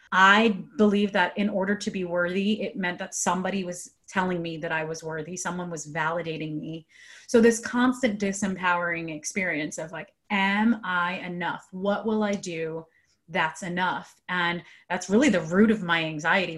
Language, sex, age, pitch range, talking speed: English, female, 30-49, 185-230 Hz, 170 wpm